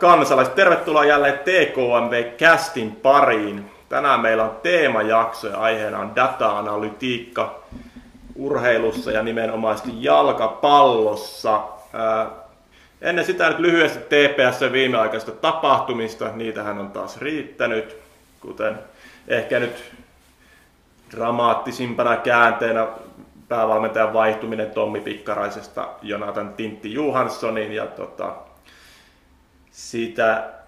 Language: Finnish